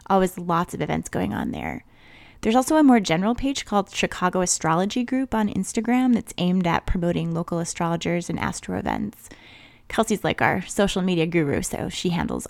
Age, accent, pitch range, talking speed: 20-39, American, 175-220 Hz, 180 wpm